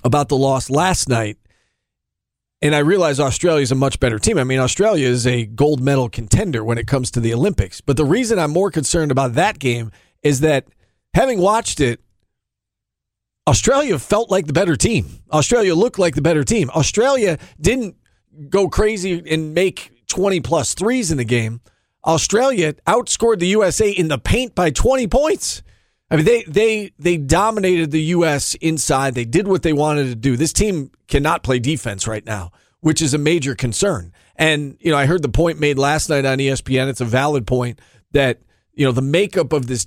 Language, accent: English, American